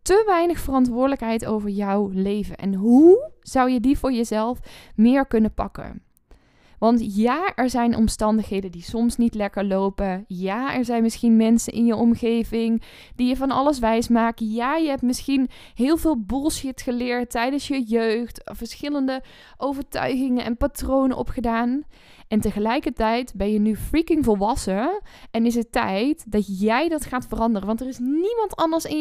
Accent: Dutch